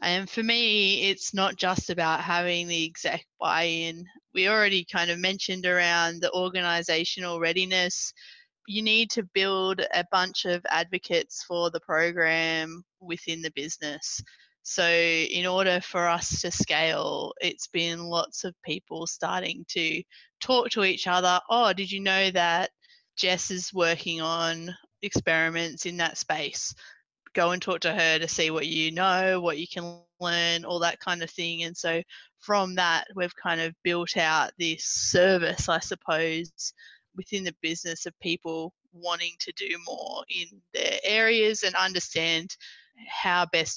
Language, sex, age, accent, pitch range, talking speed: English, female, 20-39, Australian, 170-195 Hz, 155 wpm